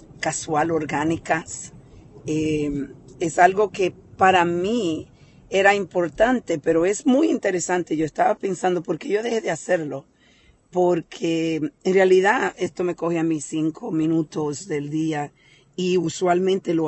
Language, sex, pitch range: Spanish, female, 150-180 Hz